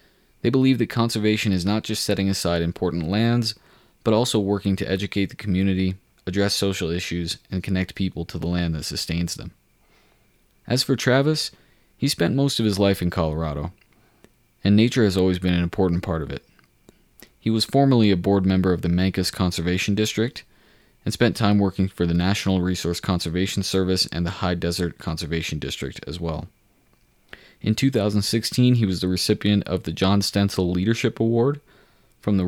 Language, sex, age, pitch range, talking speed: English, male, 20-39, 85-105 Hz, 175 wpm